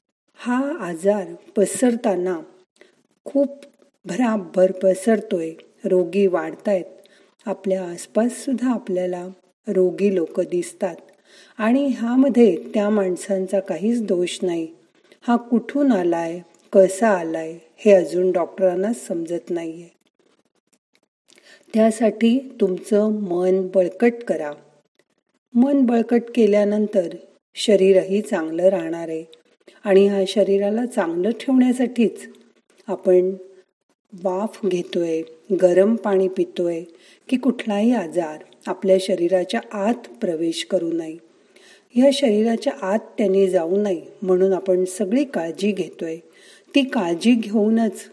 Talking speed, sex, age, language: 95 wpm, female, 40-59, Marathi